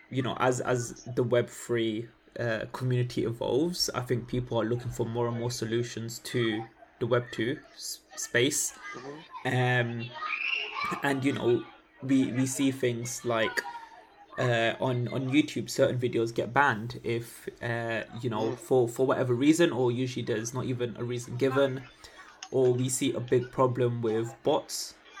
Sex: male